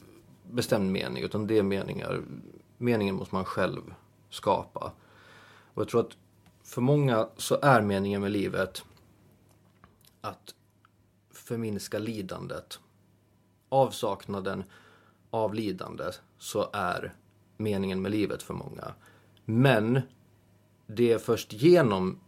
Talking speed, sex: 110 wpm, male